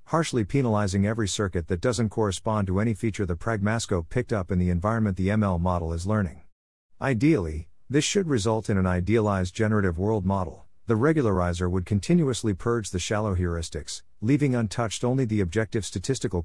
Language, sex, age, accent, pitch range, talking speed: English, male, 50-69, American, 90-115 Hz, 170 wpm